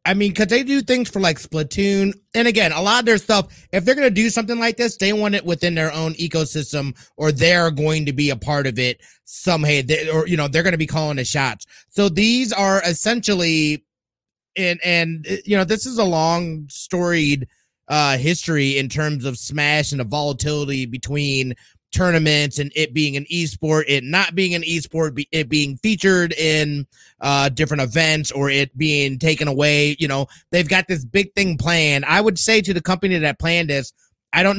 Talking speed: 200 wpm